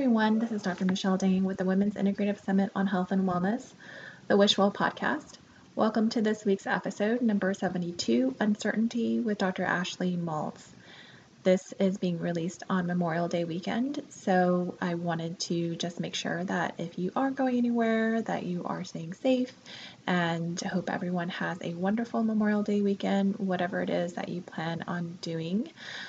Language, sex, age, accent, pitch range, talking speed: English, female, 20-39, American, 175-215 Hz, 175 wpm